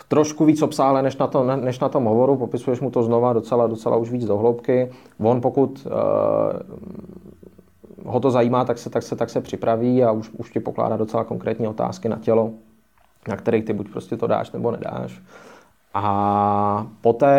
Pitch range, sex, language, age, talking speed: 105-120 Hz, male, Czech, 20-39, 175 wpm